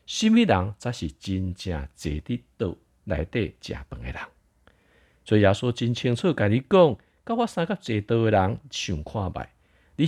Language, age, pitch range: Chinese, 50-69, 80-125 Hz